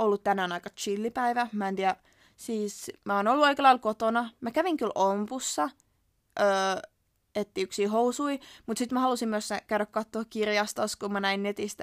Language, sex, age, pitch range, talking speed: Finnish, female, 20-39, 190-240 Hz, 165 wpm